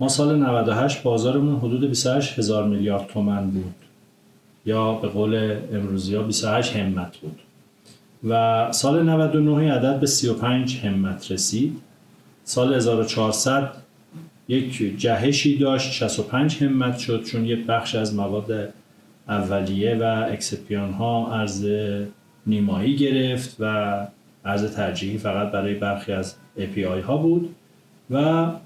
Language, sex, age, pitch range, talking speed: Persian, male, 40-59, 100-130 Hz, 120 wpm